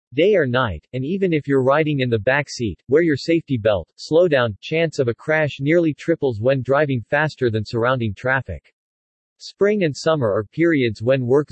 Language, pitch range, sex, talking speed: English, 120-155 Hz, male, 190 wpm